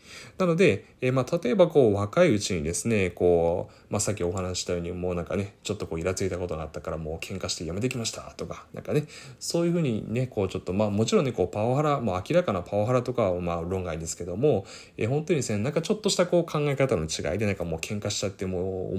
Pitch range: 95-145 Hz